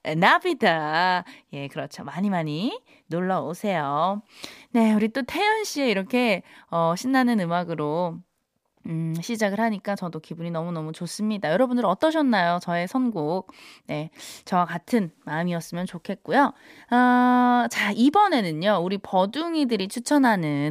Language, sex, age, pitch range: Korean, female, 20-39, 175-280 Hz